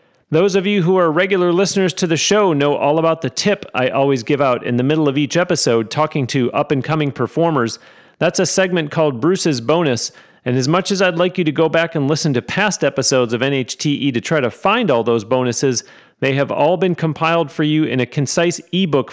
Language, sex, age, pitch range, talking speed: English, male, 40-59, 135-175 Hz, 220 wpm